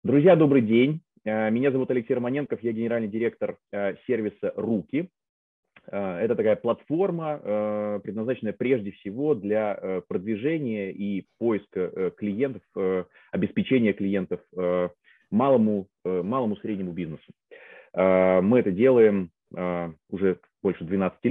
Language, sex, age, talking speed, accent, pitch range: Russian, male, 30-49, 95 wpm, native, 95-125 Hz